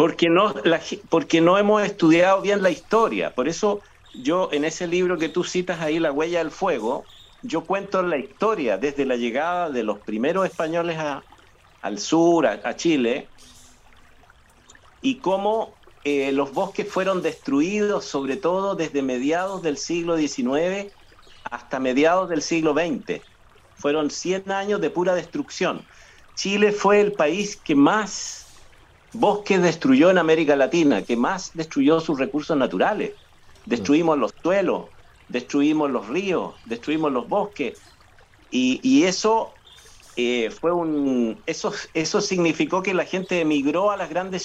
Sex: male